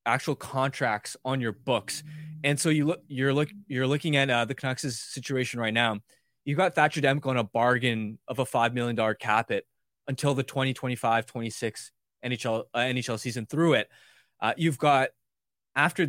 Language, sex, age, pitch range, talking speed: English, male, 20-39, 120-145 Hz, 175 wpm